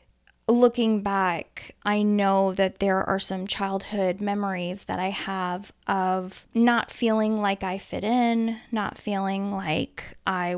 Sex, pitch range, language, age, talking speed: female, 185-210 Hz, English, 20-39, 135 wpm